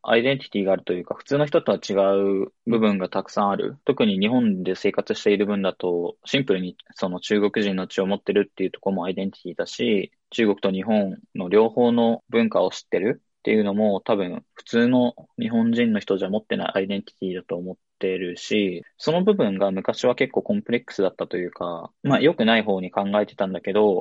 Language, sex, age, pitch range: Japanese, male, 20-39, 95-130 Hz